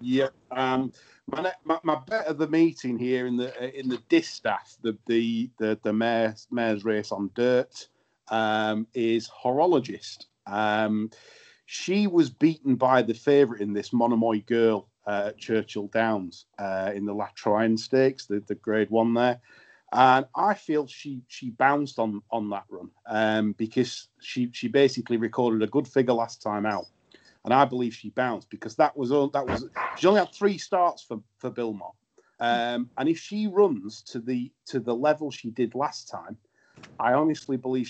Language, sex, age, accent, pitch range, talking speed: English, male, 40-59, British, 110-140 Hz, 175 wpm